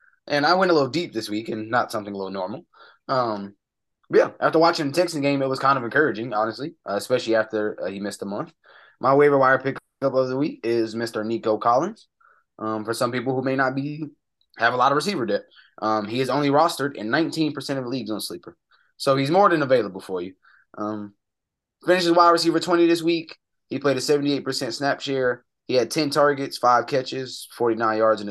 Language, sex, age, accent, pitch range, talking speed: English, male, 20-39, American, 110-145 Hz, 215 wpm